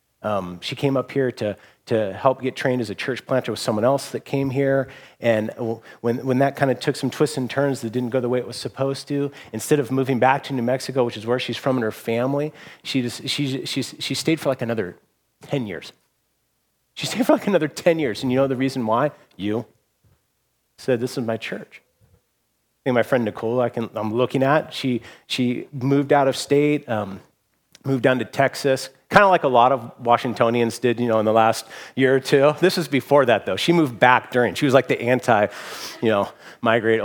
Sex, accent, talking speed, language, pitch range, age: male, American, 225 wpm, English, 120-140 Hz, 40-59